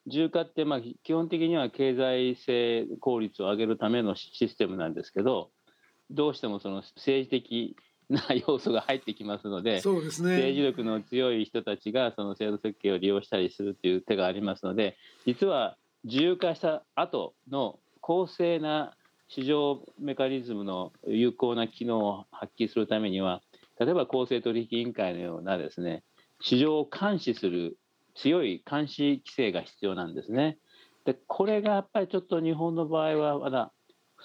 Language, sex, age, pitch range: Japanese, male, 40-59, 105-150 Hz